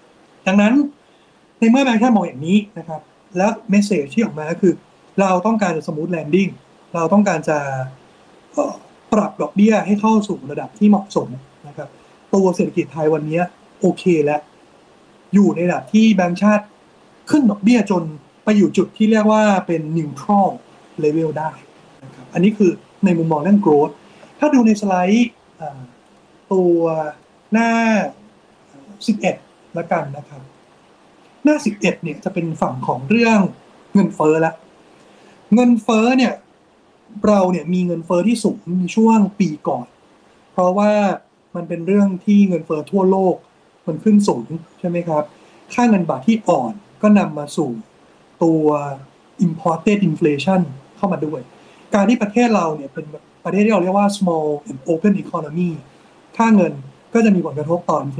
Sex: male